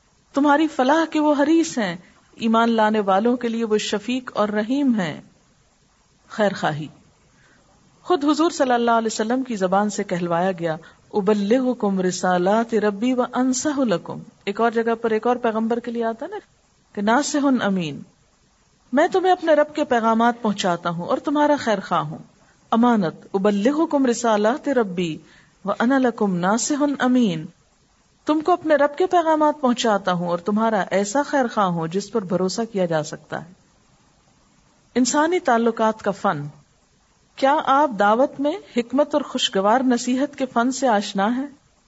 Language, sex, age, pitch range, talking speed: Urdu, female, 50-69, 205-275 Hz, 155 wpm